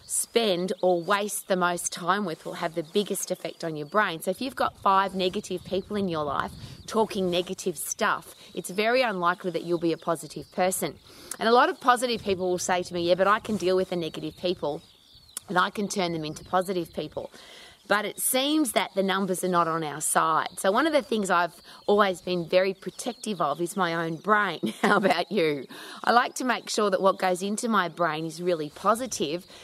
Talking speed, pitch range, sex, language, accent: 215 wpm, 175-210 Hz, female, English, Australian